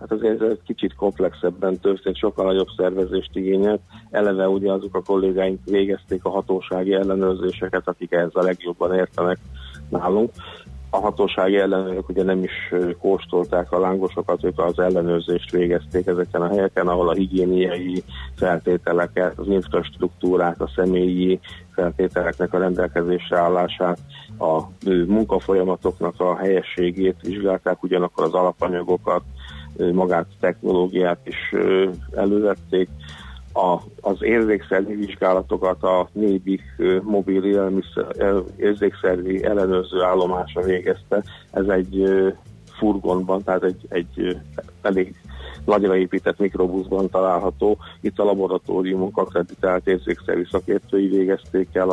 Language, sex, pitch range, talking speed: Hungarian, male, 90-95 Hz, 115 wpm